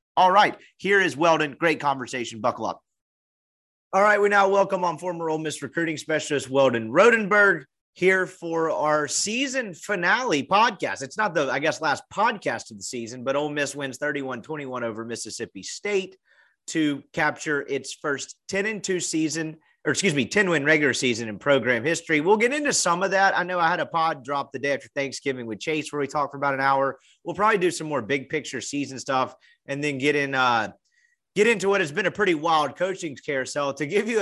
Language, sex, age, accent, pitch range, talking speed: English, male, 30-49, American, 135-180 Hz, 205 wpm